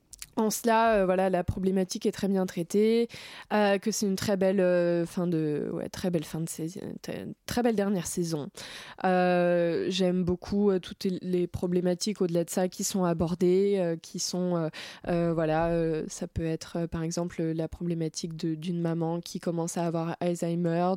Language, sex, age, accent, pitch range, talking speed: French, female, 20-39, French, 180-220 Hz, 185 wpm